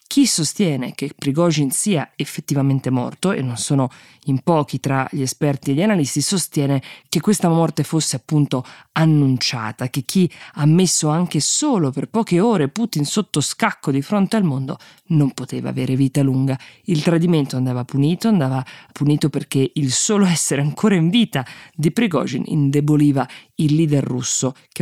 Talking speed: 160 wpm